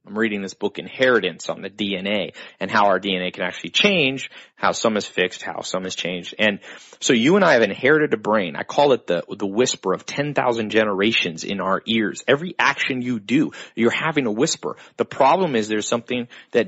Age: 30-49